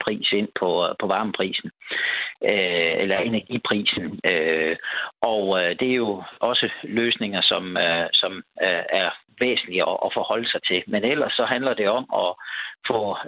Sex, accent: male, native